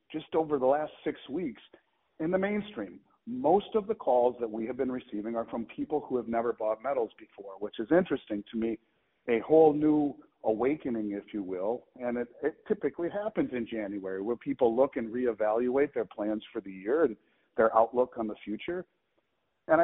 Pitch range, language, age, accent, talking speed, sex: 110-140 Hz, English, 50-69, American, 190 wpm, male